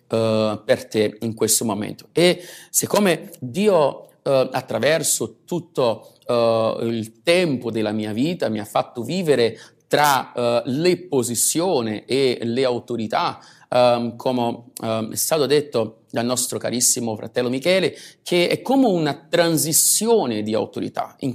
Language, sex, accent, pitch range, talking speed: Italian, male, native, 120-160 Hz, 130 wpm